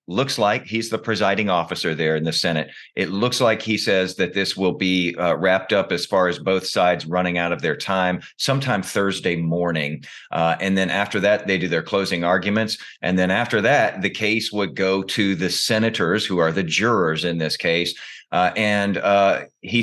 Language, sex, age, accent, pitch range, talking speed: English, male, 40-59, American, 90-110 Hz, 205 wpm